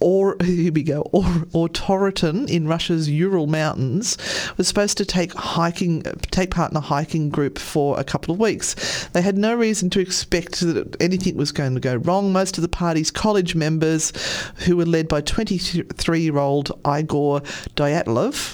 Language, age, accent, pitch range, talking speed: English, 40-59, Australian, 155-190 Hz, 170 wpm